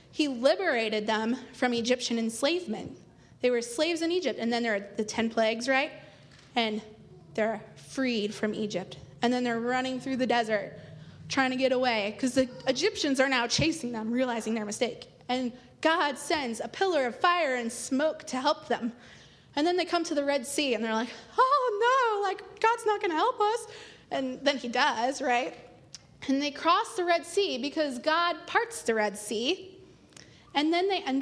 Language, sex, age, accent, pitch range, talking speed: English, female, 20-39, American, 230-330 Hz, 190 wpm